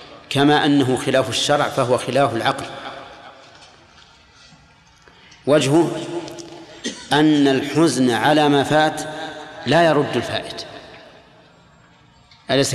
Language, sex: Arabic, male